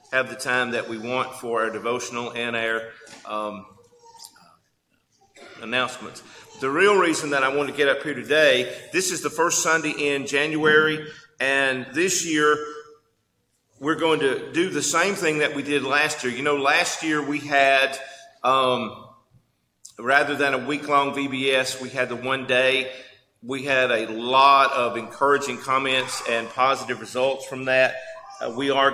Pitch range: 130-150 Hz